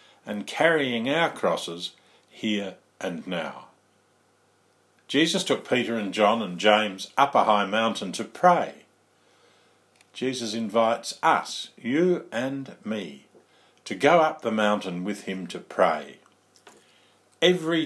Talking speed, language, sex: 120 wpm, English, male